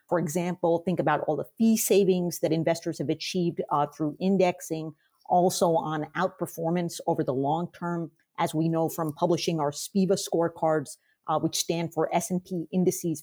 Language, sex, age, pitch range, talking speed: English, female, 40-59, 165-220 Hz, 165 wpm